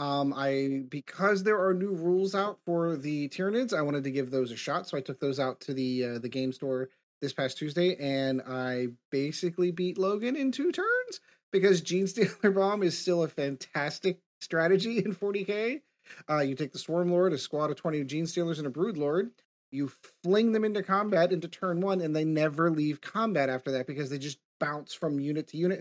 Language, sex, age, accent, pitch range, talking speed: English, male, 30-49, American, 145-195 Hz, 210 wpm